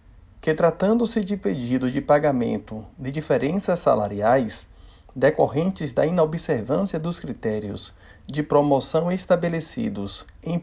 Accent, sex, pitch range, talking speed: Brazilian, male, 125-175 Hz, 100 wpm